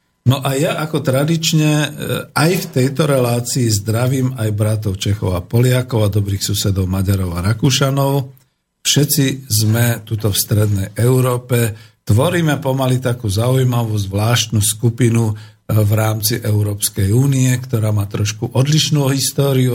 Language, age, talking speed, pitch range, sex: Slovak, 50-69, 130 wpm, 105-130 Hz, male